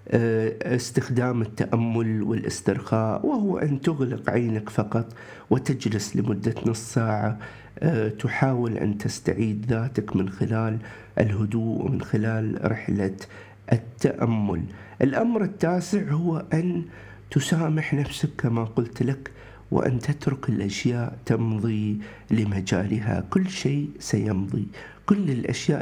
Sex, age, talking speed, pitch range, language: male, 50-69, 100 wpm, 110-145 Hz, Arabic